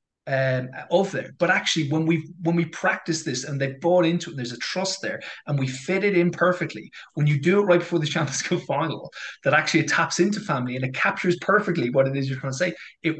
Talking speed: 240 wpm